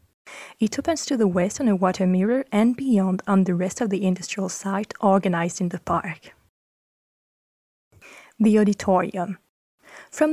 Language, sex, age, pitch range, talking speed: French, female, 20-39, 180-225 Hz, 145 wpm